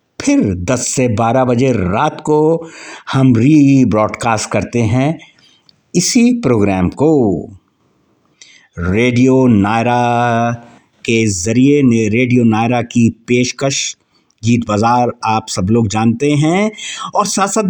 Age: 60-79